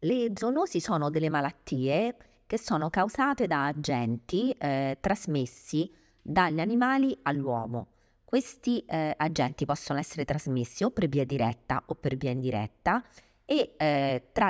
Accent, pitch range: native, 125-155 Hz